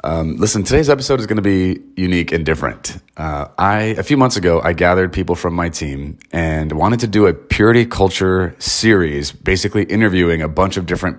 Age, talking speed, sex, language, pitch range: 30-49, 205 wpm, male, English, 85-105 Hz